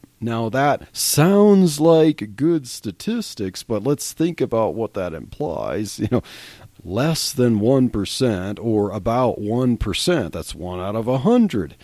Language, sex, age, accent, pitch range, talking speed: English, male, 40-59, American, 110-155 Hz, 145 wpm